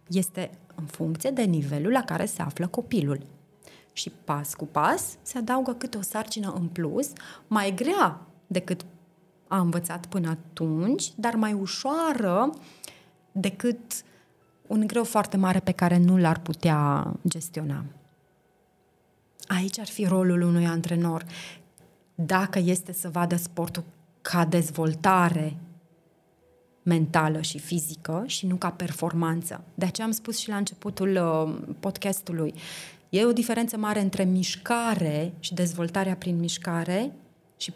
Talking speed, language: 130 wpm, Romanian